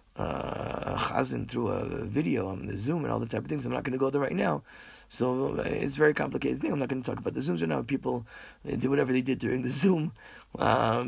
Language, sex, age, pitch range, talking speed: English, male, 40-59, 115-145 Hz, 250 wpm